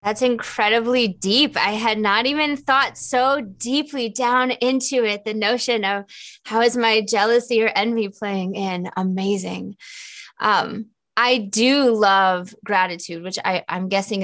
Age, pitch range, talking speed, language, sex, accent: 20-39, 200-255 Hz, 140 wpm, English, female, American